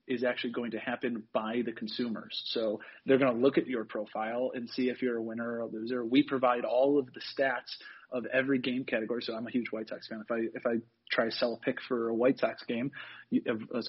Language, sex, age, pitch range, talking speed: English, male, 30-49, 115-135 Hz, 245 wpm